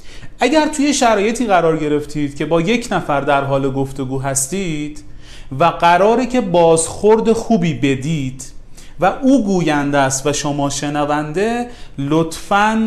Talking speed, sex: 125 wpm, male